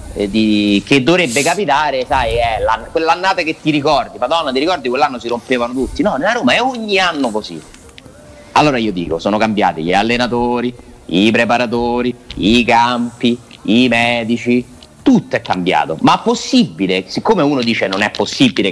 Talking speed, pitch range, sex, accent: 160 wpm, 115-190 Hz, male, native